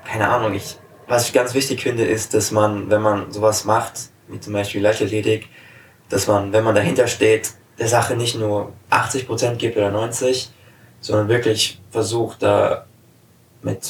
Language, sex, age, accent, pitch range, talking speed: German, male, 20-39, German, 105-115 Hz, 165 wpm